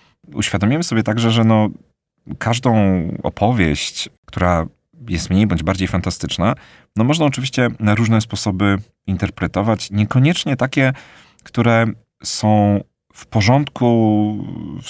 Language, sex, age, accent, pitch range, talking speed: Polish, male, 40-59, native, 90-115 Hz, 110 wpm